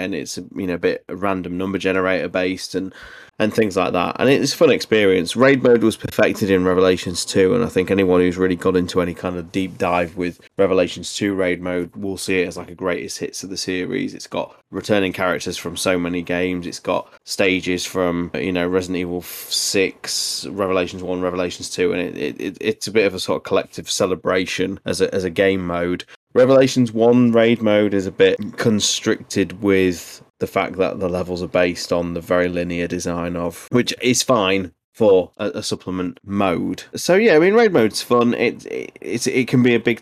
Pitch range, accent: 90-105 Hz, British